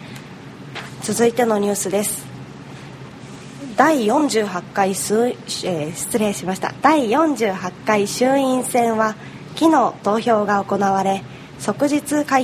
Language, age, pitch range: Japanese, 20-39, 200-285 Hz